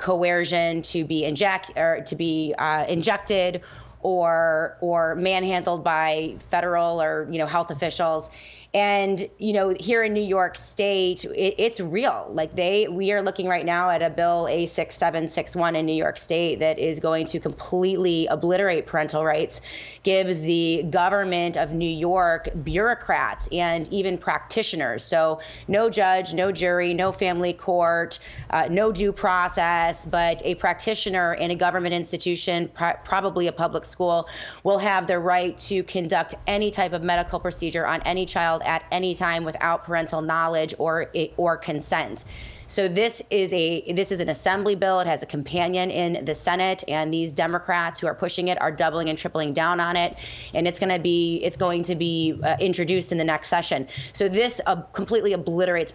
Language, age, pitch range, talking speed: English, 30-49, 165-185 Hz, 175 wpm